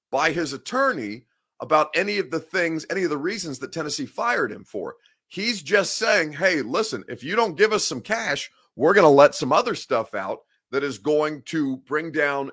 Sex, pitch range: male, 130-195 Hz